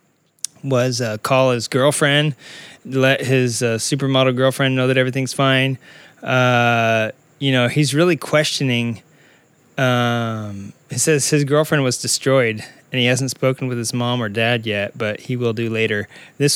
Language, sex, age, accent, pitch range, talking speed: English, male, 20-39, American, 125-150 Hz, 155 wpm